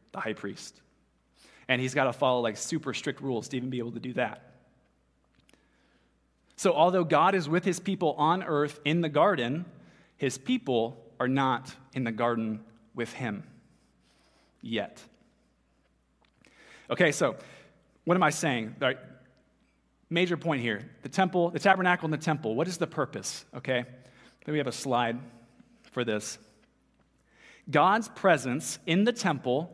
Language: English